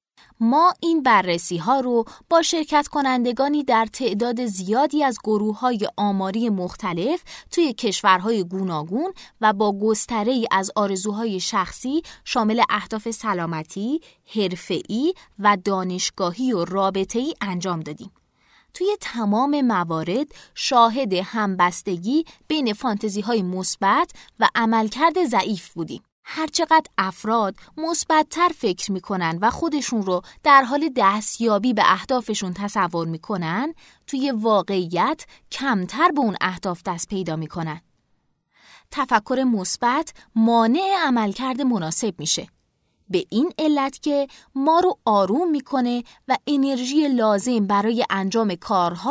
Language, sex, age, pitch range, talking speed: Persian, female, 20-39, 195-275 Hz, 115 wpm